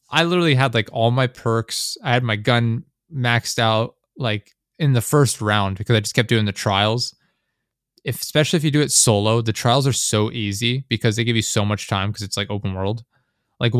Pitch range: 105-125 Hz